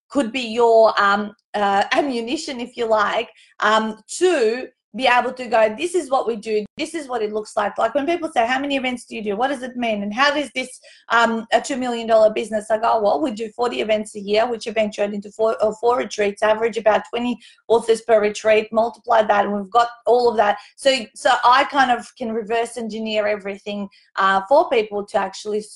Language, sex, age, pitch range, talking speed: English, female, 30-49, 205-245 Hz, 215 wpm